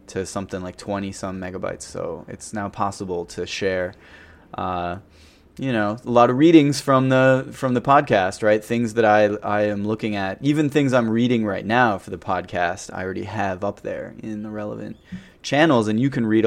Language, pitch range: English, 100-120 Hz